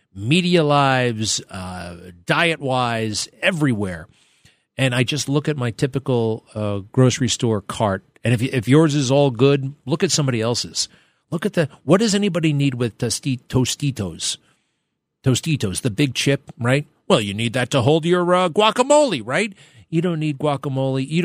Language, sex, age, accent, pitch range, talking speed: English, male, 40-59, American, 110-145 Hz, 165 wpm